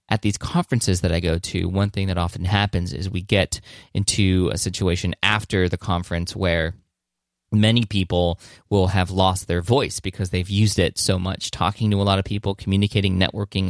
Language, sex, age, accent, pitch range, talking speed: English, male, 20-39, American, 90-115 Hz, 190 wpm